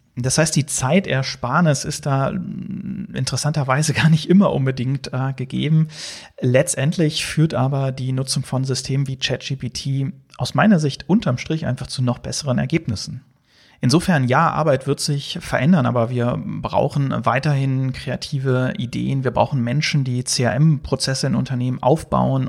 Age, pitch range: 40-59, 125-145 Hz